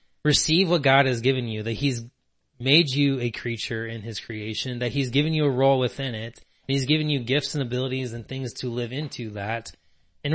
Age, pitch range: 20-39, 115-140 Hz